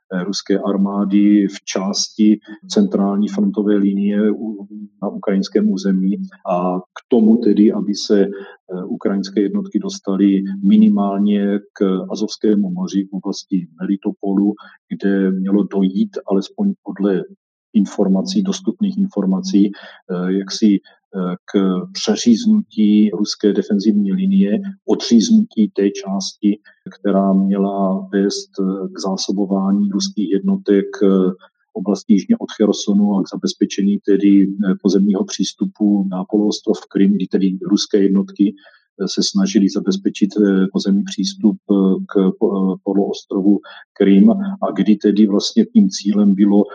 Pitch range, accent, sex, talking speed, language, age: 95-105 Hz, native, male, 110 wpm, Czech, 40-59